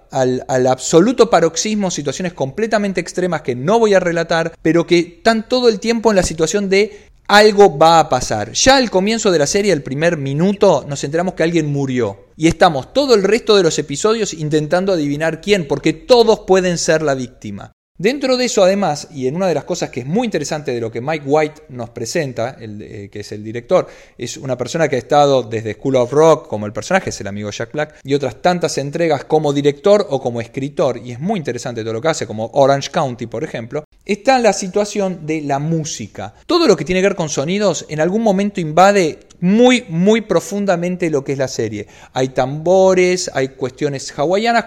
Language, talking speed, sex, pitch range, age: Spanish, 205 wpm, male, 135-185 Hz, 20-39